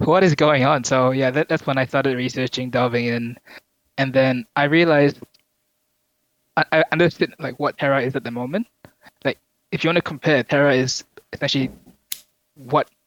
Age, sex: 20-39, male